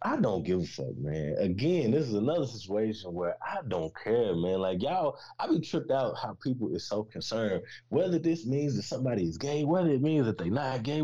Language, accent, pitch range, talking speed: English, American, 105-145 Hz, 230 wpm